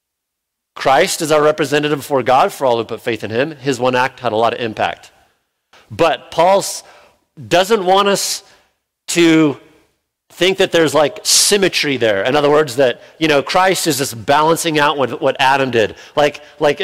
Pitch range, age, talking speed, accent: 115-150 Hz, 50-69, 180 wpm, American